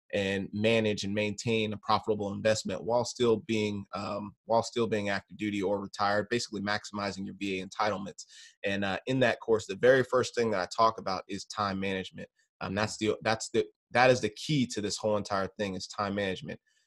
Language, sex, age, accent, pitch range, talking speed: English, male, 20-39, American, 100-115 Hz, 200 wpm